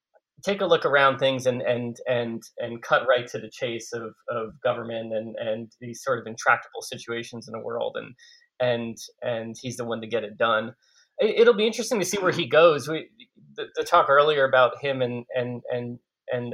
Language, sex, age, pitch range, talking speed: English, male, 30-49, 120-160 Hz, 205 wpm